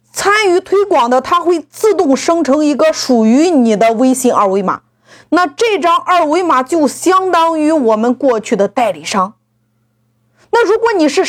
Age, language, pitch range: 30-49, Chinese, 245-345 Hz